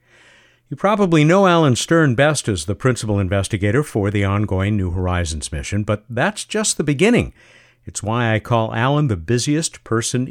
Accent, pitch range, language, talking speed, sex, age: American, 105-145 Hz, English, 170 wpm, male, 50-69